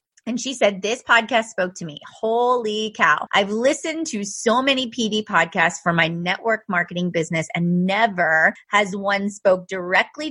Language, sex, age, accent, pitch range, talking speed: English, female, 30-49, American, 185-235 Hz, 165 wpm